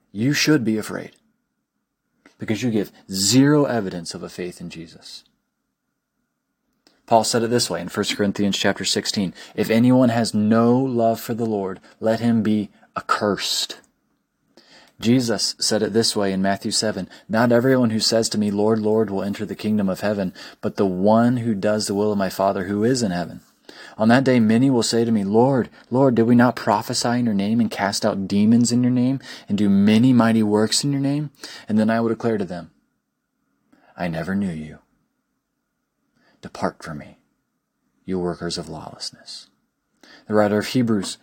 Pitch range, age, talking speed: 100-120 Hz, 30-49, 185 wpm